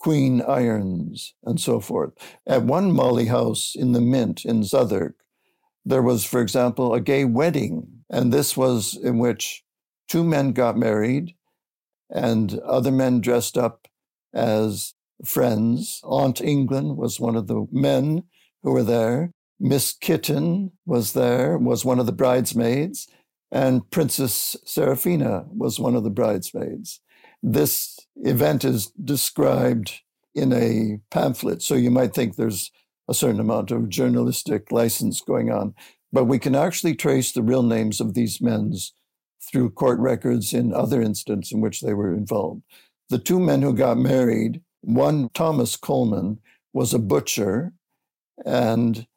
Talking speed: 145 wpm